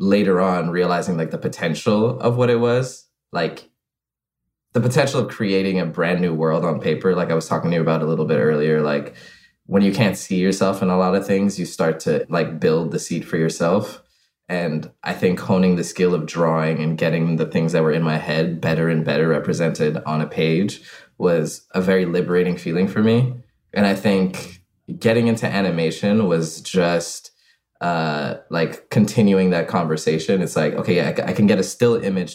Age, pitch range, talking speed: 20-39, 80-100 Hz, 195 wpm